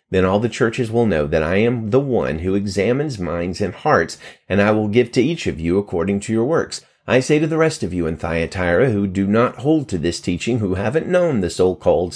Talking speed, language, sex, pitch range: 240 wpm, English, male, 95-135 Hz